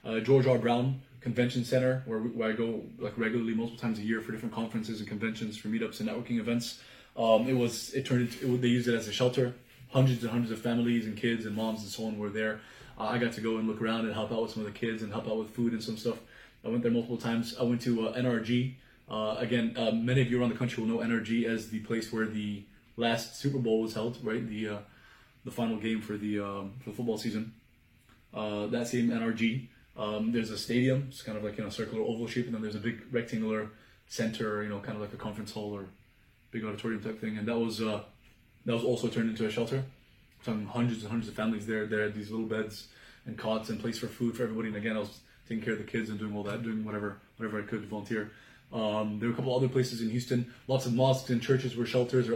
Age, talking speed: 20-39, 260 wpm